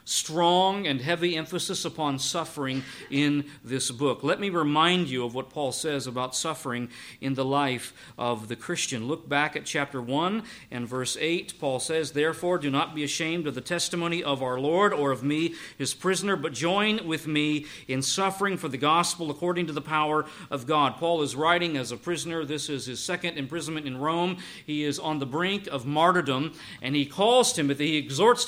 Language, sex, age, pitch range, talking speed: English, male, 50-69, 145-185 Hz, 195 wpm